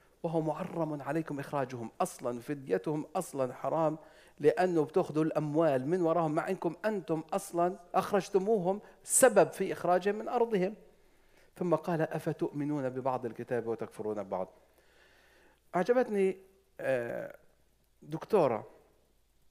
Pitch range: 130-180 Hz